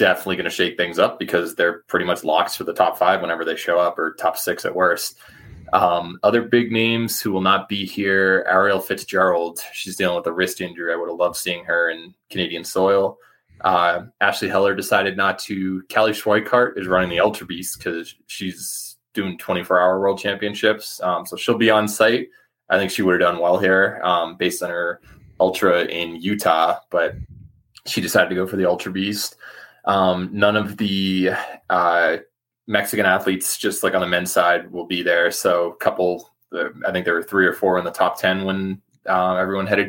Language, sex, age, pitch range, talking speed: English, male, 20-39, 90-105 Hz, 200 wpm